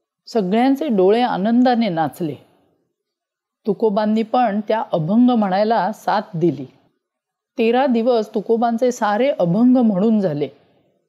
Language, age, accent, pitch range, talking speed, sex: Marathi, 40-59, native, 195-255 Hz, 95 wpm, female